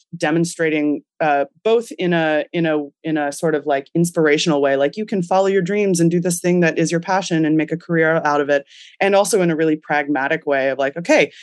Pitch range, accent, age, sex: 145-180 Hz, American, 20-39, female